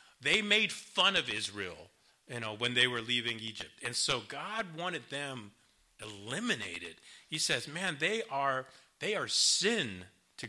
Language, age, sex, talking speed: English, 40-59, male, 155 wpm